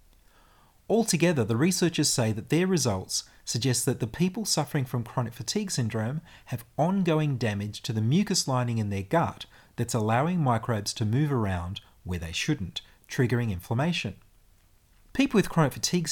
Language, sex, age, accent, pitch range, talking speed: English, male, 30-49, Australian, 110-145 Hz, 155 wpm